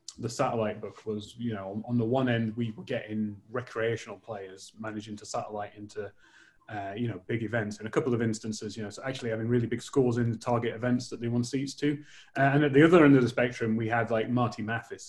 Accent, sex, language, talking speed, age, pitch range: British, male, English, 235 wpm, 30-49, 110-145 Hz